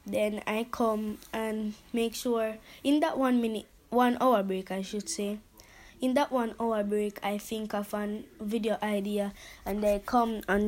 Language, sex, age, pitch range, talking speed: English, female, 20-39, 205-235 Hz, 175 wpm